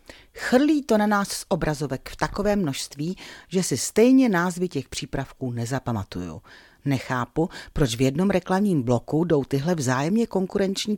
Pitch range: 125-190 Hz